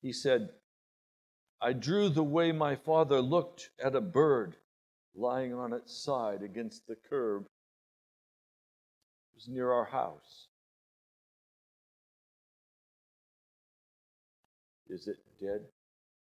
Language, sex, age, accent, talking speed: English, male, 50-69, American, 100 wpm